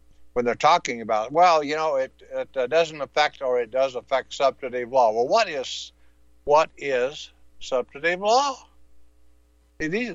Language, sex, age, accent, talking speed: English, male, 60-79, American, 155 wpm